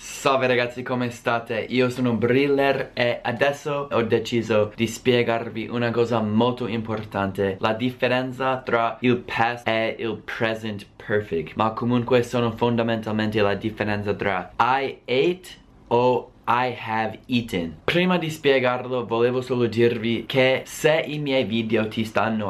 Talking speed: 140 wpm